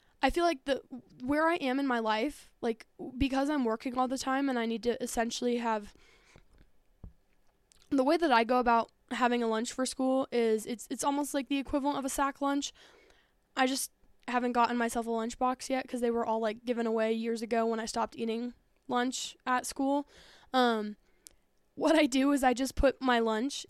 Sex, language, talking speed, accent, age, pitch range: female, English, 205 wpm, American, 10-29, 230-285 Hz